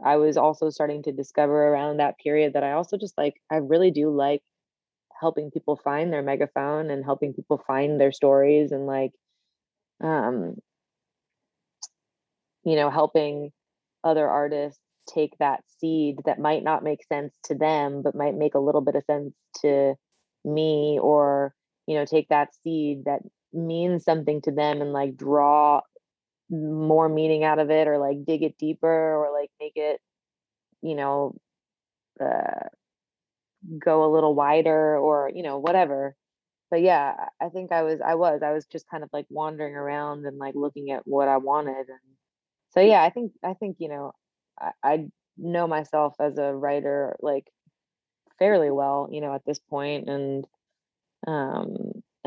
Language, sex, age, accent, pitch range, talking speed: English, female, 20-39, American, 140-155 Hz, 165 wpm